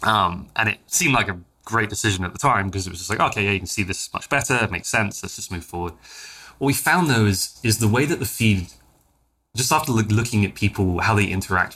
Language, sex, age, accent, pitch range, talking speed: English, male, 20-39, British, 90-115 Hz, 250 wpm